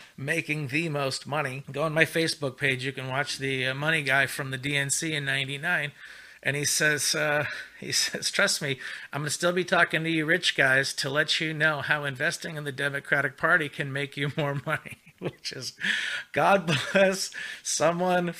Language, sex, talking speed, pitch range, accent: English, male, 185 wpm, 140-170 Hz, American